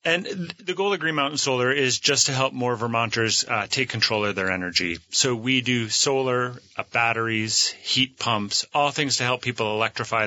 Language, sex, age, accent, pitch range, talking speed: English, male, 30-49, American, 100-120 Hz, 195 wpm